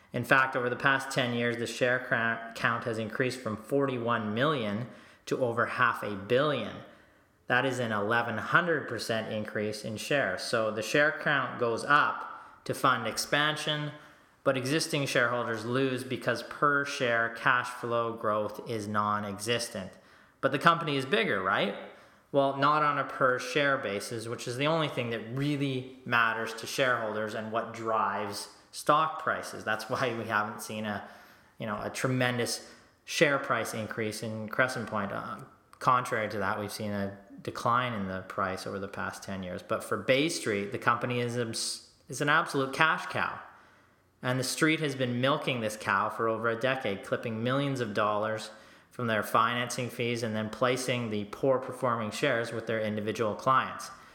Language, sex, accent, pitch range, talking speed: English, male, American, 110-130 Hz, 165 wpm